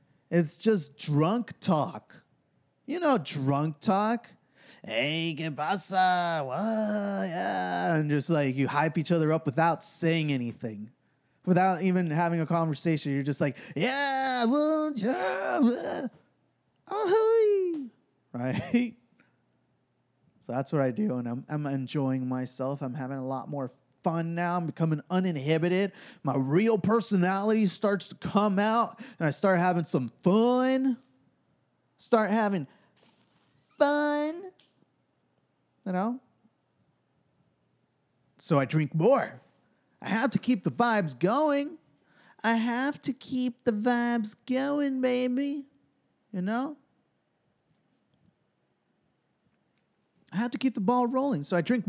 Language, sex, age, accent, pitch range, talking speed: English, male, 20-39, American, 155-245 Hz, 125 wpm